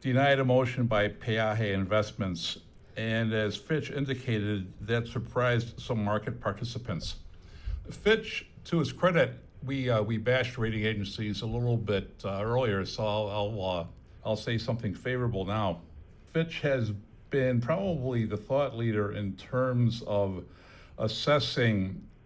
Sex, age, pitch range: male, 60-79, 100-125 Hz